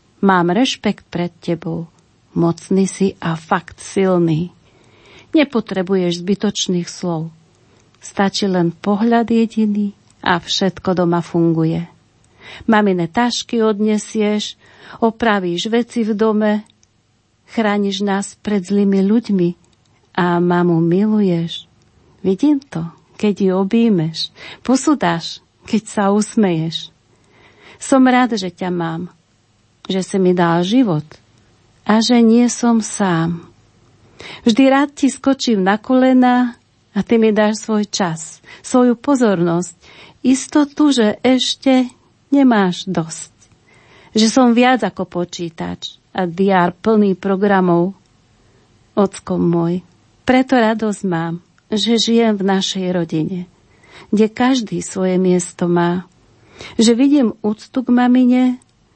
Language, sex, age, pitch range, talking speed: Slovak, female, 40-59, 170-225 Hz, 110 wpm